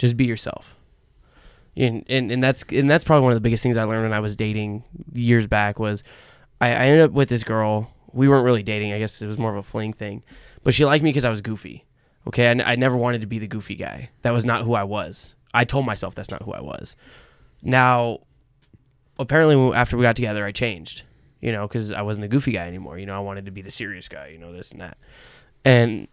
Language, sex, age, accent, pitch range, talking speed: English, male, 10-29, American, 105-130 Hz, 240 wpm